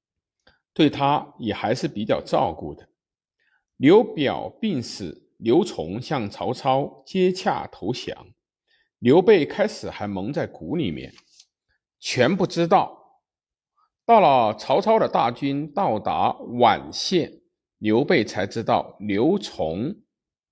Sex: male